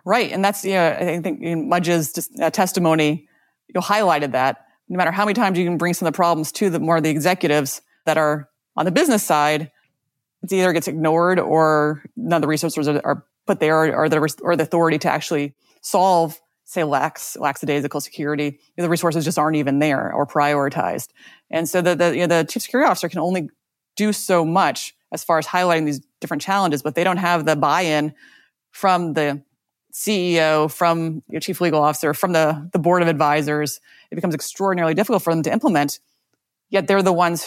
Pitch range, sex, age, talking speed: 150-180 Hz, female, 30-49, 205 wpm